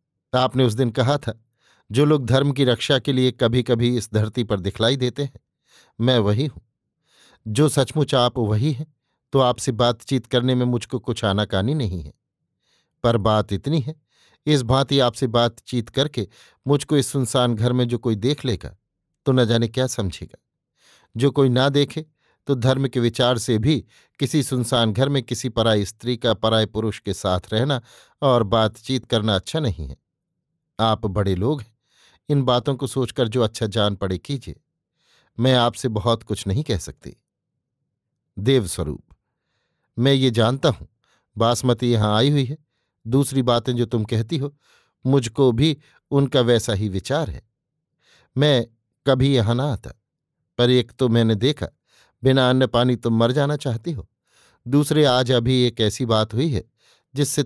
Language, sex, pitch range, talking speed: Hindi, male, 115-135 Hz, 170 wpm